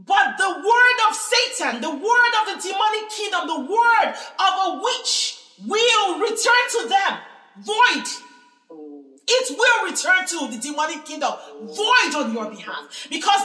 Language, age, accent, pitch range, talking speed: English, 40-59, Nigerian, 270-410 Hz, 145 wpm